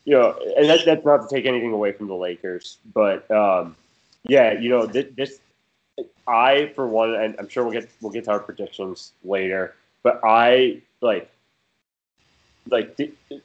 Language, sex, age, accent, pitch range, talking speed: English, male, 20-39, American, 95-130 Hz, 170 wpm